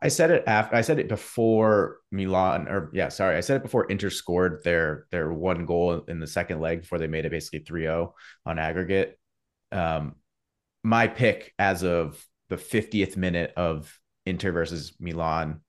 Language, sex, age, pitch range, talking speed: English, male, 30-49, 80-95 Hz, 175 wpm